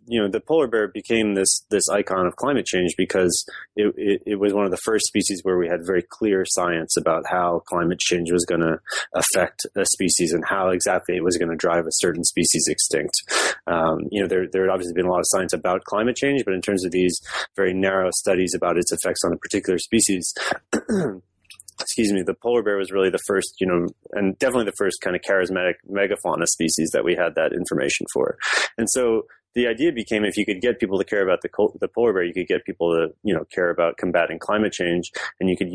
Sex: male